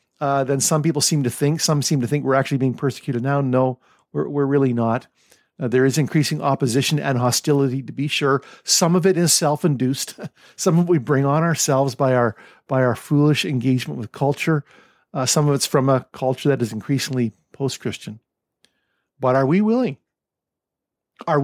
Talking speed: 190 wpm